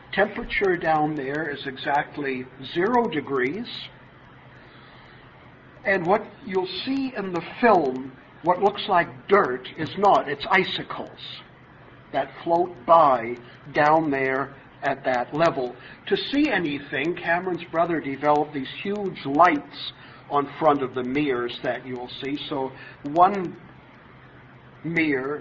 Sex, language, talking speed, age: male, English, 120 wpm, 50-69